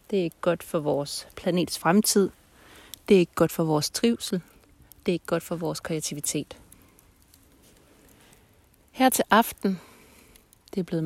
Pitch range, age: 160-205 Hz, 30-49